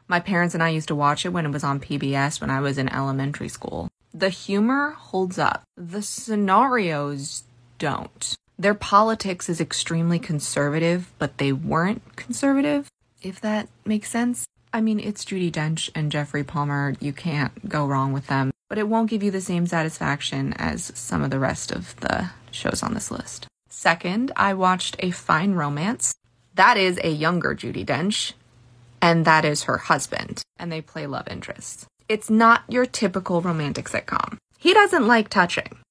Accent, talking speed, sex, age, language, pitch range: American, 175 wpm, female, 20-39, English, 150-215 Hz